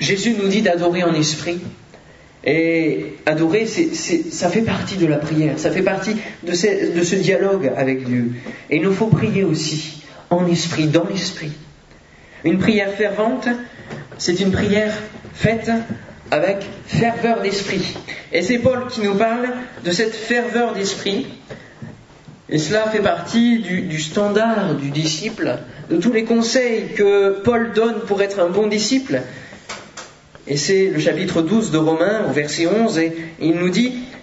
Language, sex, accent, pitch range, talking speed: French, male, French, 165-225 Hz, 160 wpm